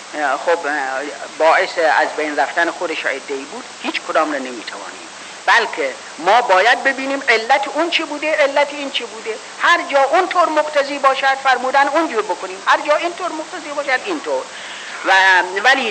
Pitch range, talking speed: 205-285 Hz, 150 wpm